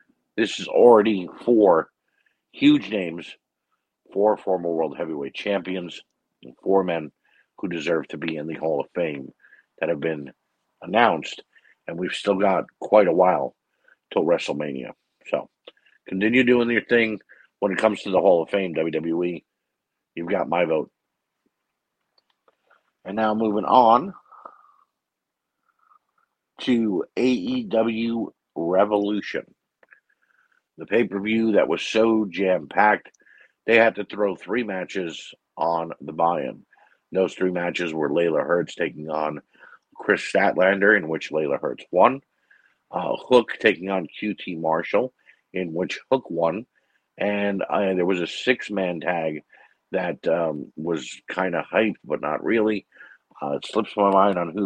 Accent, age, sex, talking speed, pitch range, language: American, 50-69, male, 135 wpm, 85-115 Hz, English